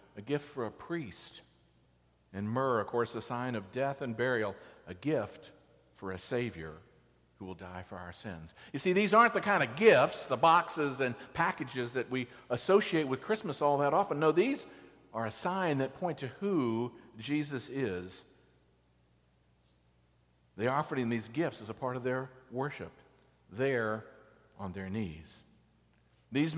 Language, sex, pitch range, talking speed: English, male, 105-165 Hz, 165 wpm